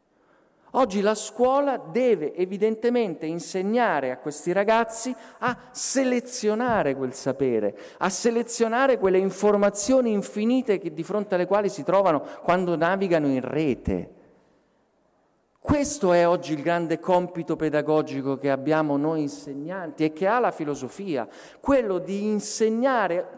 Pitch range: 150-210 Hz